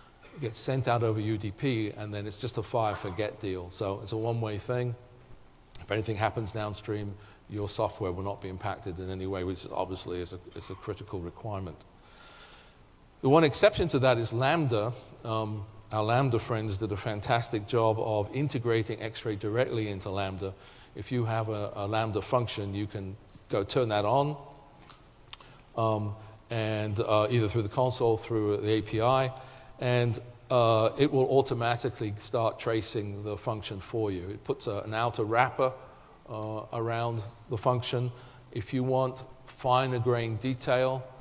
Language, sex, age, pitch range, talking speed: English, male, 40-59, 105-120 Hz, 155 wpm